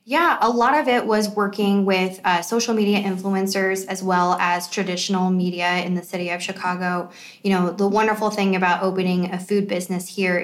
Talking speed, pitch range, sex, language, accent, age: 190 wpm, 180-200 Hz, female, English, American, 20-39